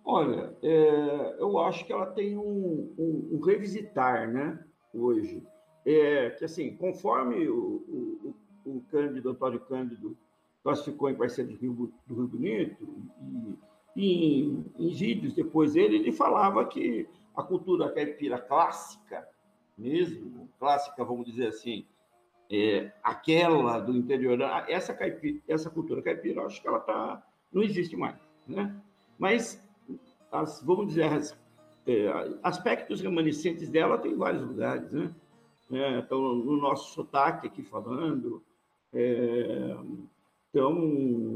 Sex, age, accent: male, 50-69, Brazilian